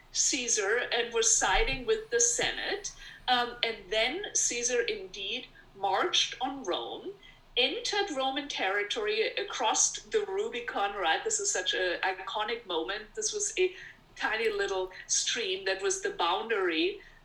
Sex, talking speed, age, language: female, 130 wpm, 50-69, English